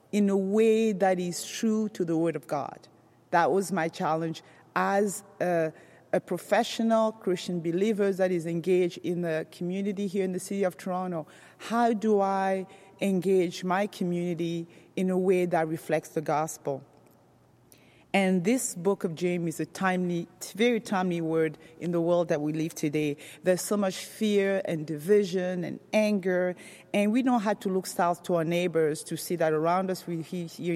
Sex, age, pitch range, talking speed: female, 40-59, 175-210 Hz, 175 wpm